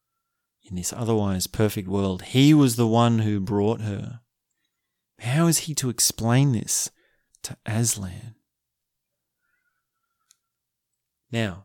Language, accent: English, Australian